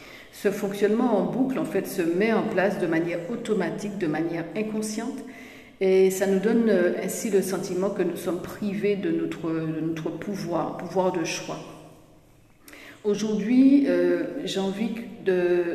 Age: 60-79